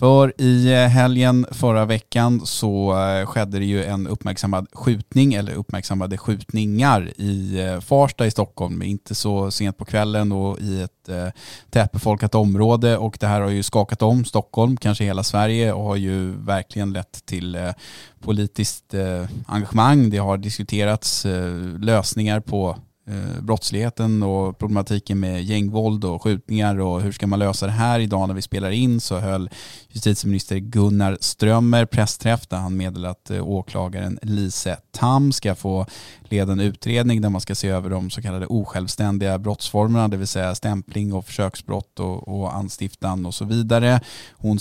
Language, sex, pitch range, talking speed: Swedish, male, 95-115 Hz, 150 wpm